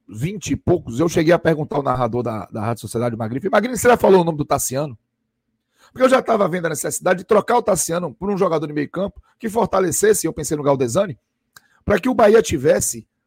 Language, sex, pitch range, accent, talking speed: Portuguese, male, 140-210 Hz, Brazilian, 215 wpm